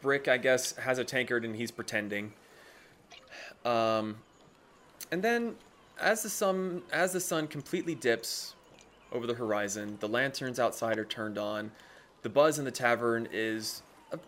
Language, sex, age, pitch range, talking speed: English, male, 20-39, 110-145 Hz, 145 wpm